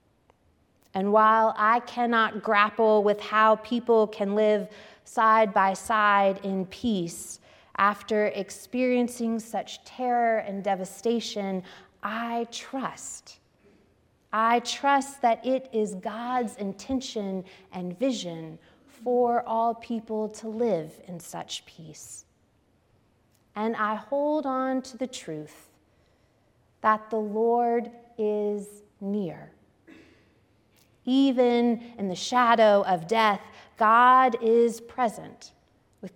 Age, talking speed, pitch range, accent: 30-49, 105 wpm, 180-240 Hz, American